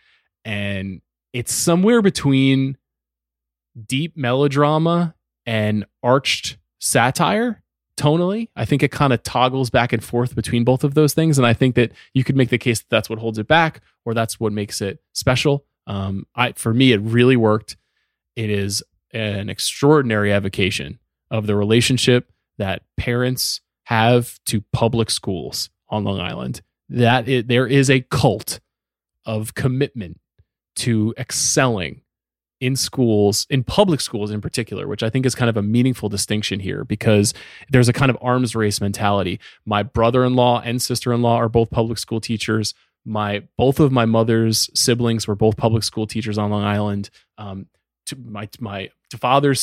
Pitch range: 105-135 Hz